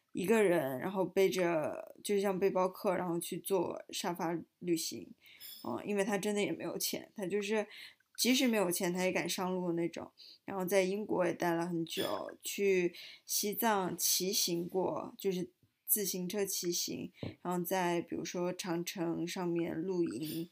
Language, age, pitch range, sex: Chinese, 20-39, 175-210 Hz, female